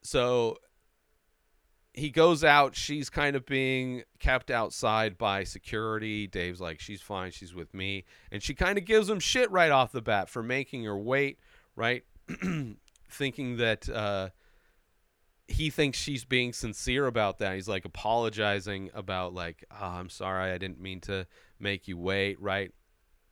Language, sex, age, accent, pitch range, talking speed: English, male, 40-59, American, 90-120 Hz, 155 wpm